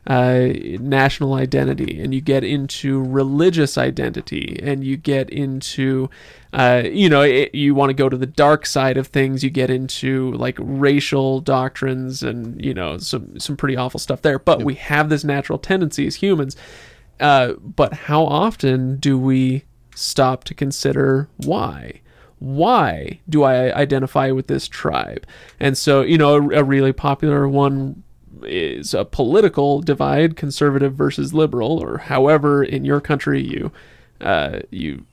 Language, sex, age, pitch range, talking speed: English, male, 30-49, 135-150 Hz, 155 wpm